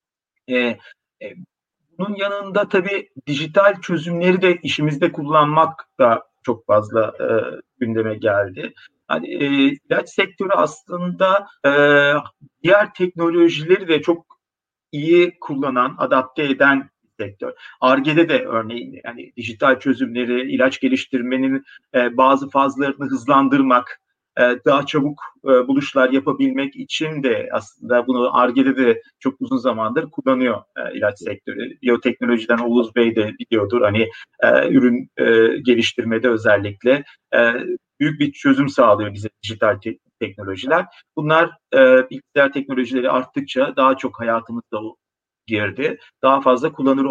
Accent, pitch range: native, 125-180 Hz